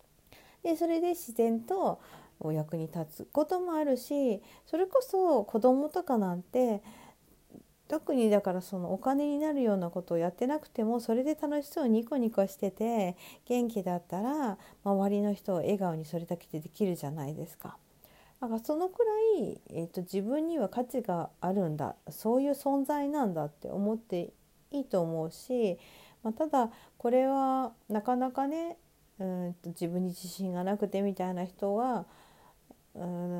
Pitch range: 180-260 Hz